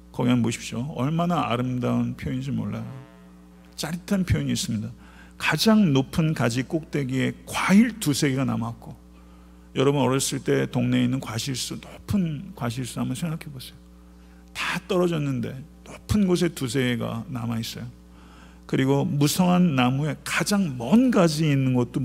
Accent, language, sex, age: native, Korean, male, 50-69